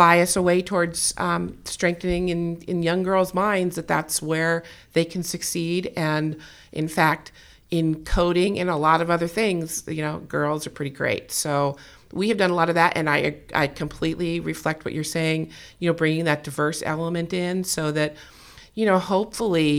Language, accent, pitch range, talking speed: English, American, 150-175 Hz, 185 wpm